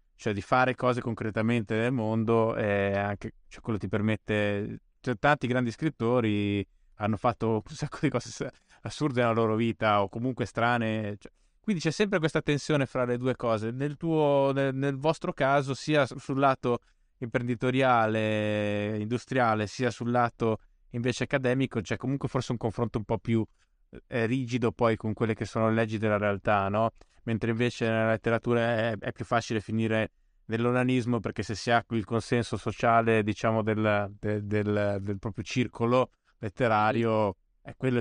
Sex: male